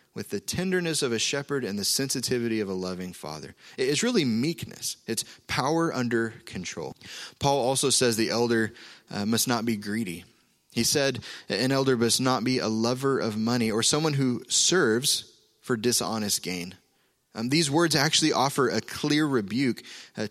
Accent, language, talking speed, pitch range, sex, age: American, English, 170 wpm, 110-135 Hz, male, 20-39